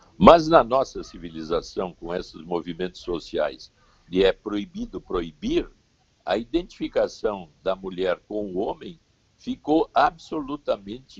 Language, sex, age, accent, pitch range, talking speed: Portuguese, male, 60-79, Brazilian, 100-160 Hz, 115 wpm